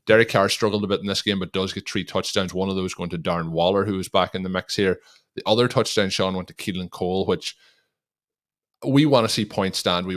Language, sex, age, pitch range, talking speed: English, male, 20-39, 90-110 Hz, 255 wpm